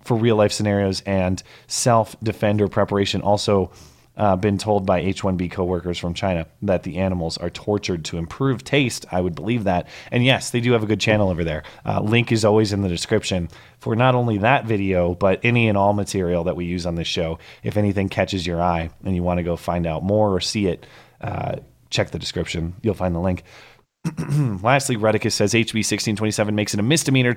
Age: 30-49